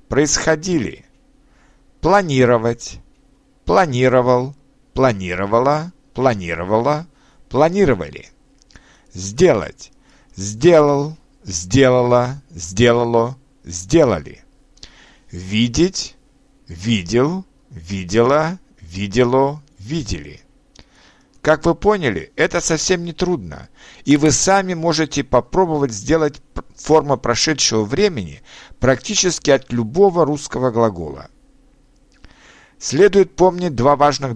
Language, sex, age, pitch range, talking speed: Ukrainian, male, 60-79, 115-160 Hz, 70 wpm